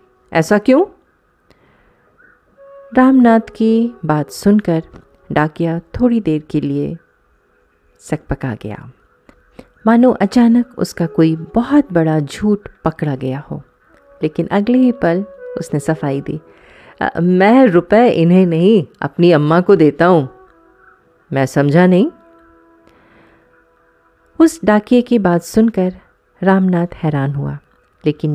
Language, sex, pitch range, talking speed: Hindi, female, 150-230 Hz, 110 wpm